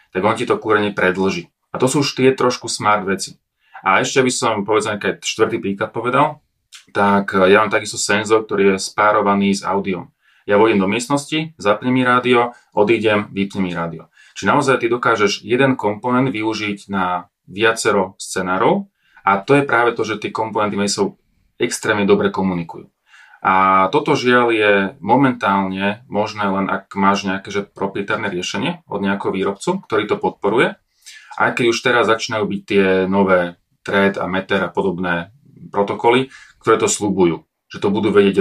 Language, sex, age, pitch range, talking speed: Slovak, male, 30-49, 100-120 Hz, 165 wpm